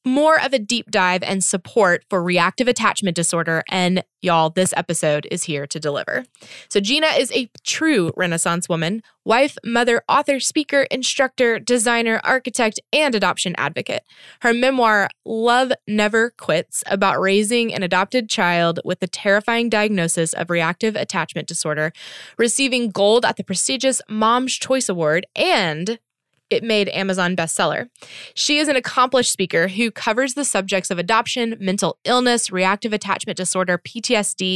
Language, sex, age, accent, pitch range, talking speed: English, female, 20-39, American, 180-245 Hz, 145 wpm